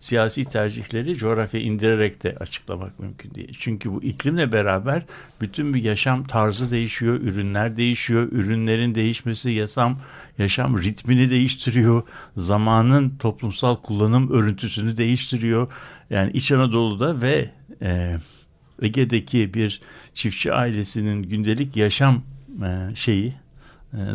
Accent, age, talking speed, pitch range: native, 60-79, 110 wpm, 100-125 Hz